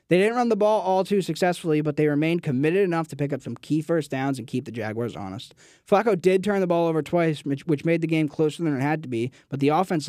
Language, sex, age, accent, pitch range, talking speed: English, male, 20-39, American, 145-185 Hz, 270 wpm